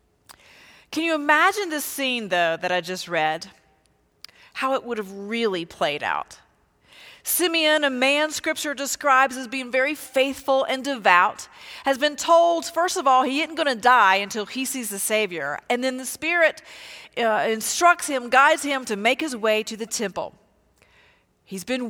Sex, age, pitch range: female, 40-59, 215-310 Hz